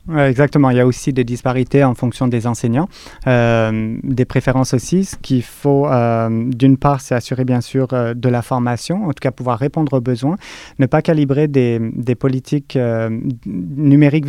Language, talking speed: French, 185 wpm